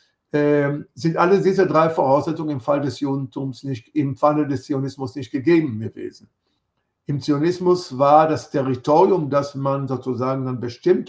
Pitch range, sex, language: 130-155 Hz, male, German